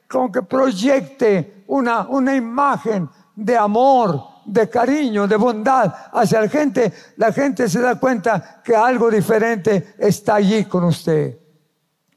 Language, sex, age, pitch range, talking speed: Spanish, male, 50-69, 200-250 Hz, 135 wpm